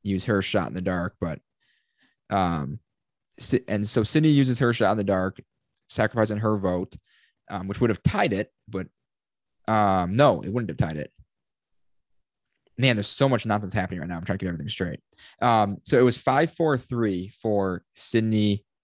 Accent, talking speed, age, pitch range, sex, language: American, 180 wpm, 20-39, 95-125 Hz, male, English